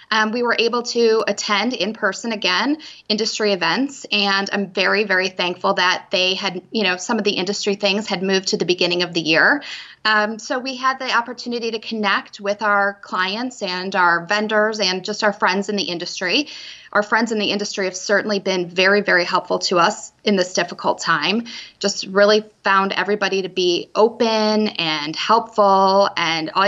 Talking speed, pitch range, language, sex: 185 wpm, 195-230 Hz, English, female